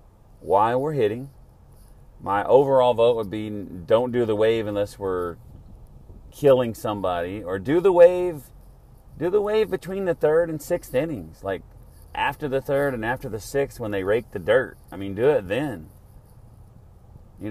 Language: English